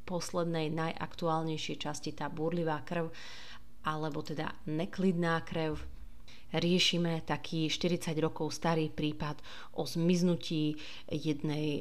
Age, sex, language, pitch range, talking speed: 30-49, female, Slovak, 155-180 Hz, 95 wpm